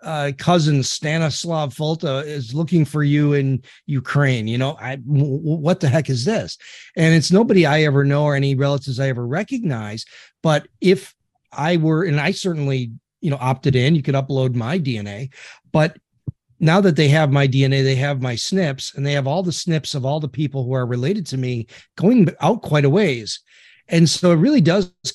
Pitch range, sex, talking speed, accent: 135-165 Hz, male, 200 wpm, American